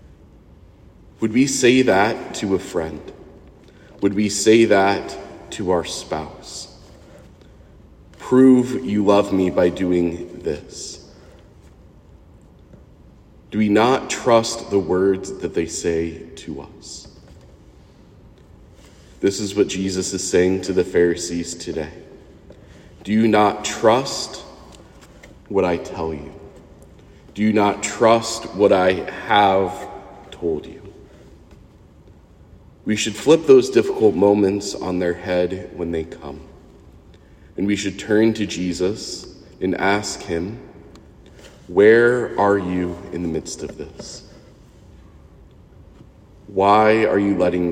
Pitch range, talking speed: 85-105 Hz, 115 wpm